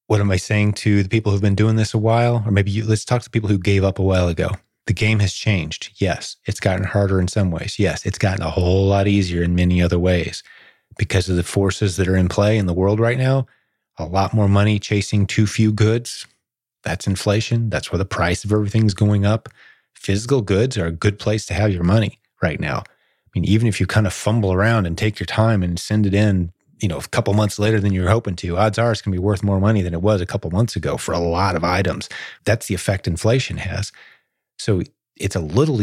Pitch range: 95-110 Hz